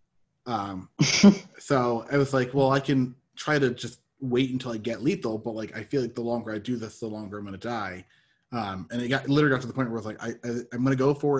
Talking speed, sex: 280 wpm, male